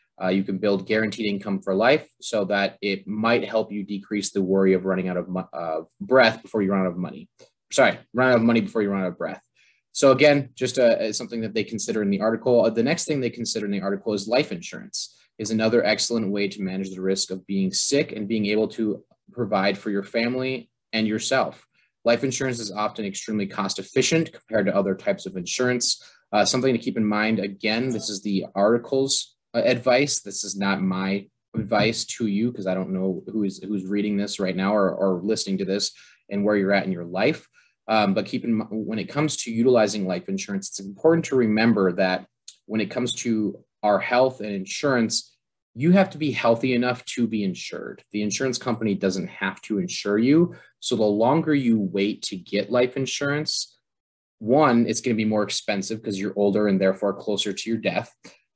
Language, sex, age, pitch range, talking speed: English, male, 20-39, 100-120 Hz, 210 wpm